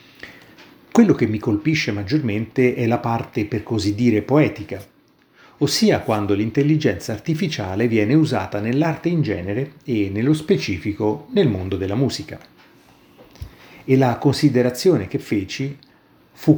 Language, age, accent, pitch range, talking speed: Italian, 30-49, native, 105-135 Hz, 125 wpm